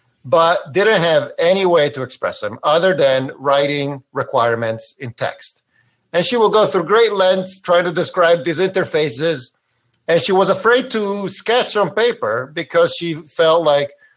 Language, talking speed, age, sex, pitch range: English, 160 wpm, 50-69, male, 140-195 Hz